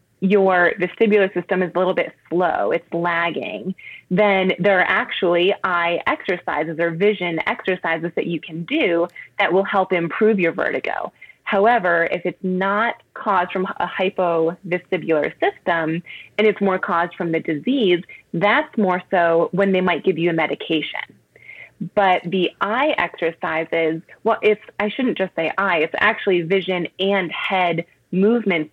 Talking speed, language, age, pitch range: 150 wpm, English, 20-39, 170-205 Hz